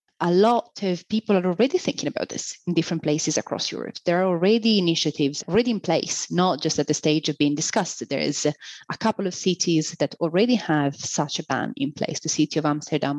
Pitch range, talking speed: 150-175 Hz, 215 wpm